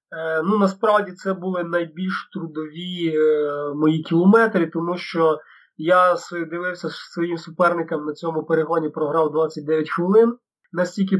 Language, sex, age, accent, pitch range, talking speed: Ukrainian, male, 20-39, native, 165-195 Hz, 120 wpm